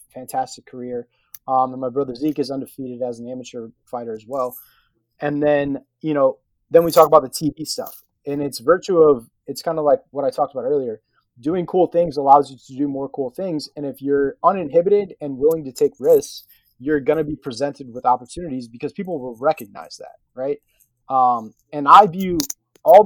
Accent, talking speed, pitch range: American, 200 wpm, 130-165 Hz